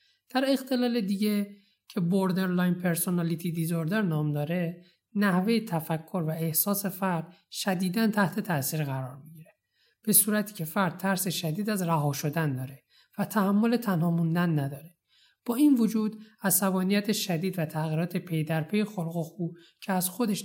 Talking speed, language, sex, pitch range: 140 wpm, Persian, male, 165-210 Hz